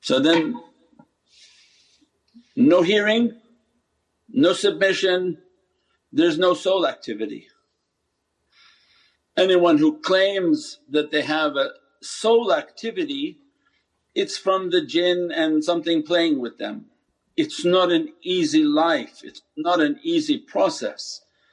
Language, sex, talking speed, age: English, male, 105 wpm, 50-69